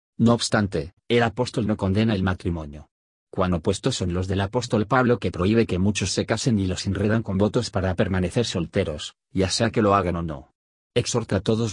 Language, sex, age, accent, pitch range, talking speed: Spanish, male, 40-59, Spanish, 90-115 Hz, 200 wpm